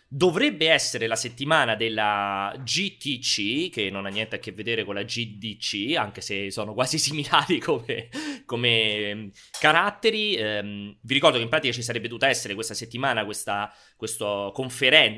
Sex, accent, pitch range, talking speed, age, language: male, native, 105-135 Hz, 155 wpm, 30-49, Italian